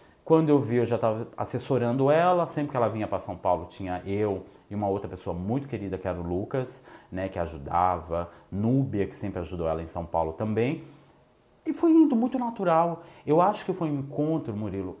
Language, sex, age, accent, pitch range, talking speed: Portuguese, male, 40-59, Brazilian, 95-145 Hz, 205 wpm